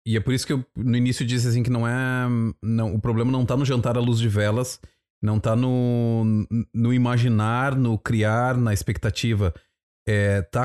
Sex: male